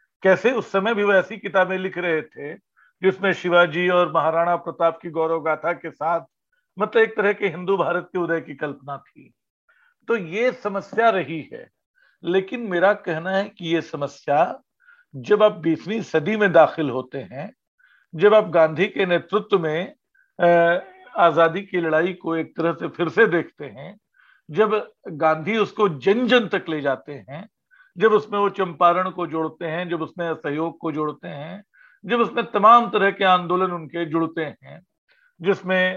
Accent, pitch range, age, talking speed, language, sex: native, 165-215 Hz, 50-69, 165 wpm, Hindi, male